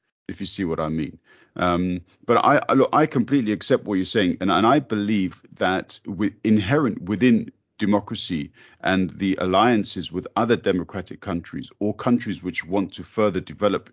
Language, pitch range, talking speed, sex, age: English, 90-110 Hz, 170 wpm, male, 50-69